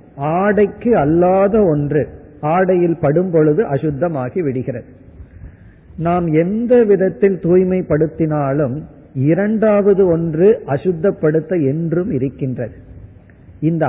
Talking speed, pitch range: 75 wpm, 135-190 Hz